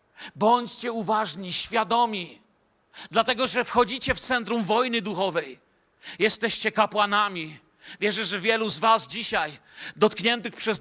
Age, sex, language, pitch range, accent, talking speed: 40-59, male, Polish, 210-245 Hz, native, 110 wpm